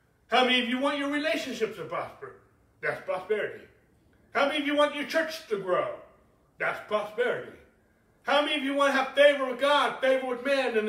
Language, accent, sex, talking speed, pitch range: English, American, male, 200 wpm, 240-295 Hz